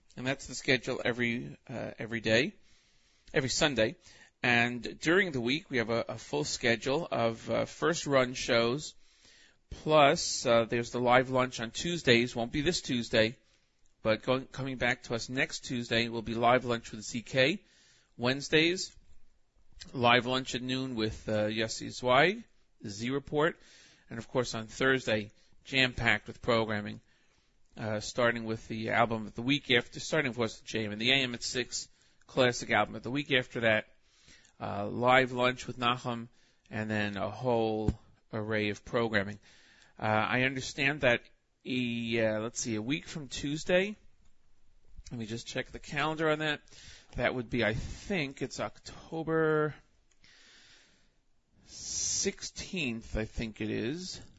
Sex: male